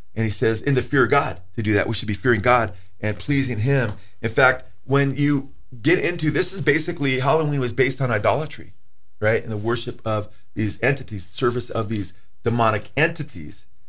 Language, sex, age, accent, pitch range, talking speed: English, male, 40-59, American, 110-140 Hz, 195 wpm